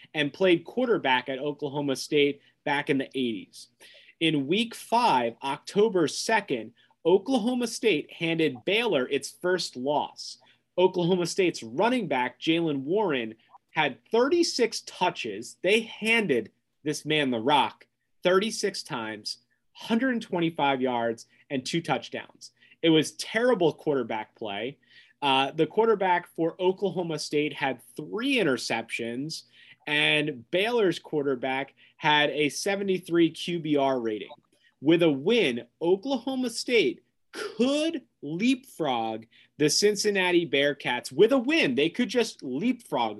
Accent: American